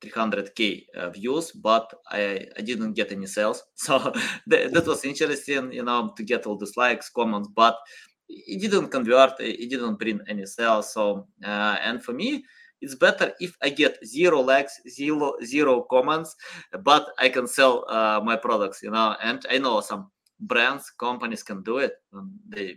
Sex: male